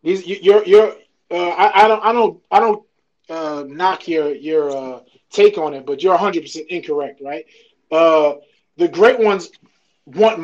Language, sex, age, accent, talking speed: English, male, 20-39, American, 165 wpm